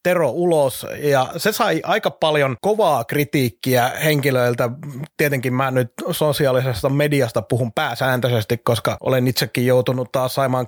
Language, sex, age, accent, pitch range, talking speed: Finnish, male, 30-49, native, 130-150 Hz, 130 wpm